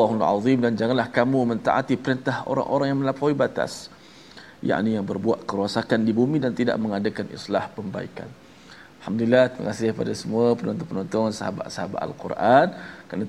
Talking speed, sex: 140 wpm, male